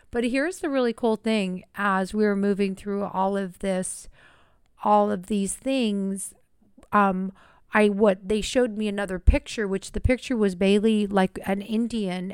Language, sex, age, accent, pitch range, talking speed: English, female, 40-59, American, 190-220 Hz, 165 wpm